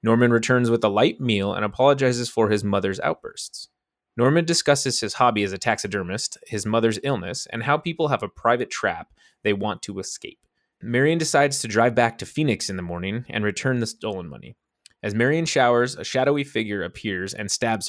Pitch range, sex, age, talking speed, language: 100-130 Hz, male, 20-39, 190 wpm, English